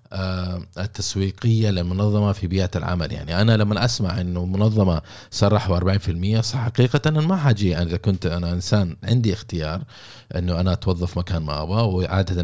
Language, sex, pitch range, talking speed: Arabic, male, 90-110 Hz, 155 wpm